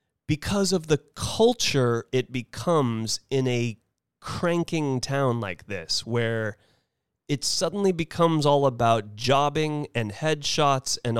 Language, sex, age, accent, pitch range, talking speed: English, male, 30-49, American, 110-145 Hz, 120 wpm